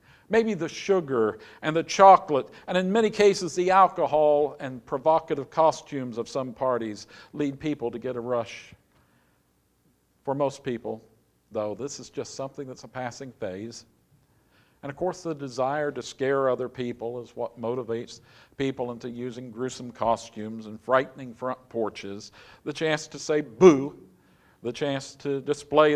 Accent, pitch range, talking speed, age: American, 115-150 Hz, 155 wpm, 50-69